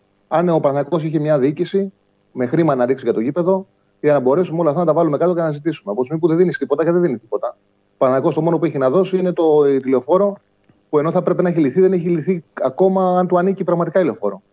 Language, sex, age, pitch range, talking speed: Greek, male, 30-49, 140-185 Hz, 260 wpm